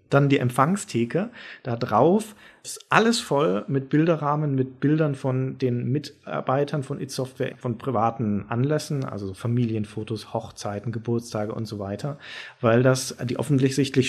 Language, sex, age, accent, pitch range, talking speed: German, male, 40-59, German, 120-145 Hz, 130 wpm